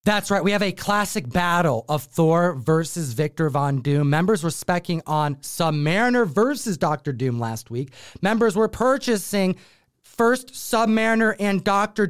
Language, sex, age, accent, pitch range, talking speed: English, male, 30-49, American, 155-215 Hz, 150 wpm